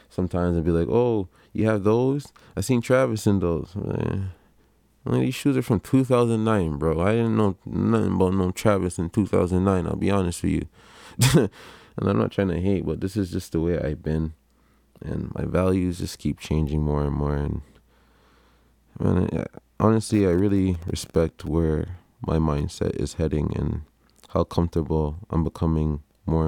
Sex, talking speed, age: male, 170 wpm, 20-39